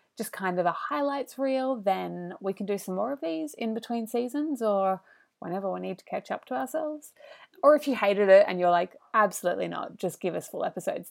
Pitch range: 180-265 Hz